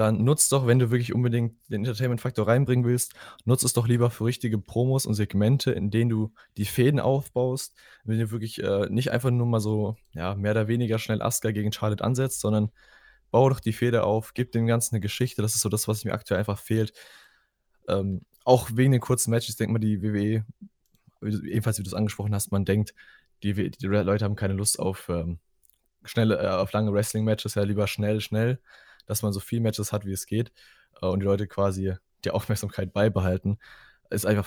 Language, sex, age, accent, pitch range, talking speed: German, male, 20-39, German, 100-120 Hz, 205 wpm